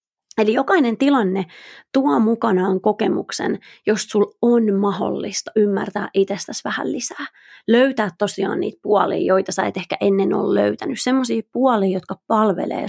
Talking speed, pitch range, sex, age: 135 wpm, 190-255 Hz, female, 30-49